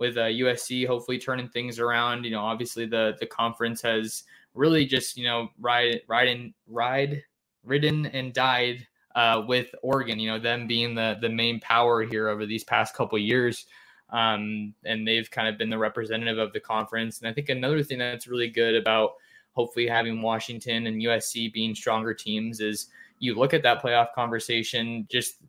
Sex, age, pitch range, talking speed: male, 20-39, 110-120 Hz, 185 wpm